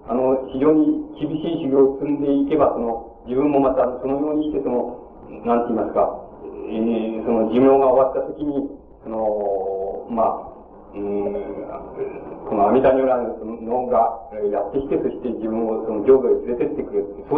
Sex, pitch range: male, 115-150 Hz